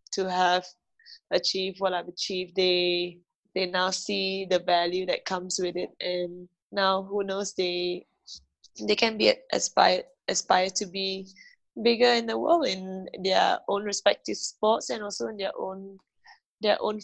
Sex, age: female, 20-39